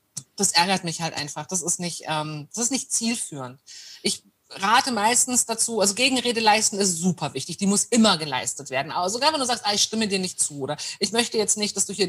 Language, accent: German, German